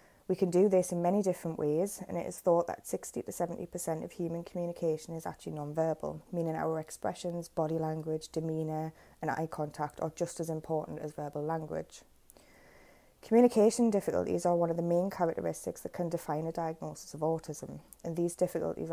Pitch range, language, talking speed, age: 155-175 Hz, English, 180 wpm, 20-39